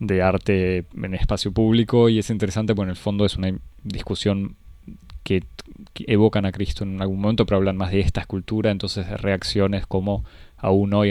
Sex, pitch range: male, 95-110 Hz